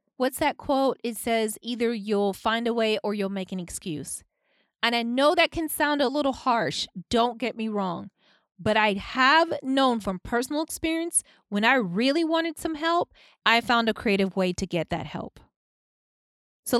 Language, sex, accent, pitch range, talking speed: English, female, American, 195-260 Hz, 180 wpm